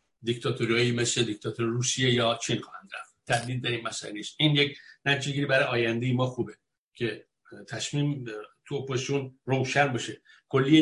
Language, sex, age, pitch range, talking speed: Persian, male, 60-79, 120-140 Hz, 155 wpm